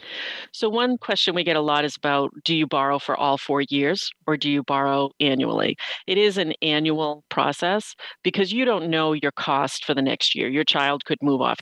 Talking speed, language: 210 wpm, English